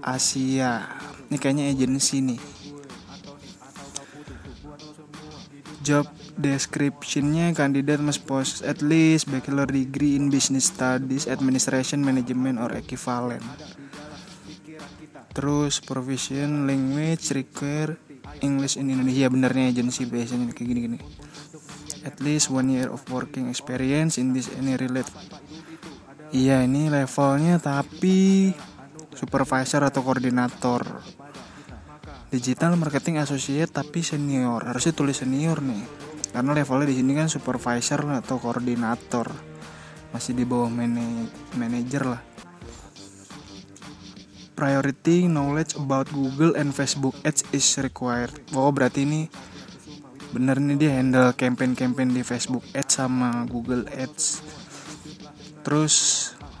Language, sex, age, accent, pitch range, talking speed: Indonesian, male, 20-39, native, 125-145 Hz, 105 wpm